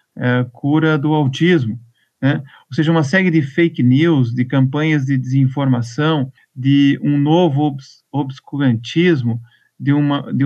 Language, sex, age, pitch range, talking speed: Portuguese, male, 50-69, 135-170 Hz, 120 wpm